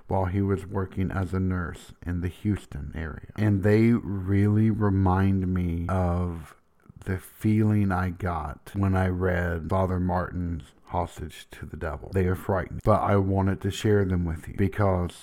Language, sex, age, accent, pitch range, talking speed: English, male, 50-69, American, 95-115 Hz, 165 wpm